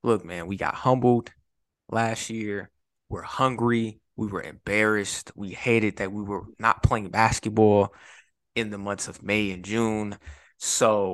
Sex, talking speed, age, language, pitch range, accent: male, 150 wpm, 20-39, English, 105-130 Hz, American